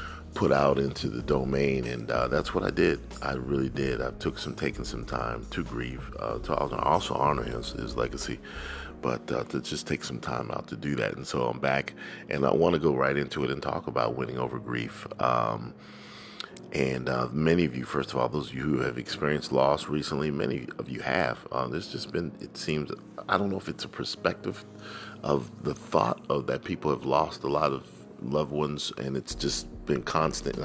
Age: 40-59